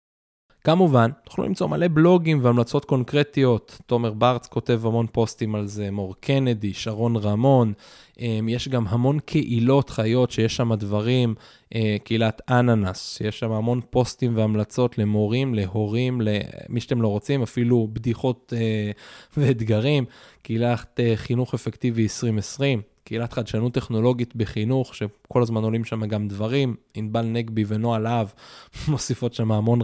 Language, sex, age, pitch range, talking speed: Hebrew, male, 20-39, 110-130 Hz, 135 wpm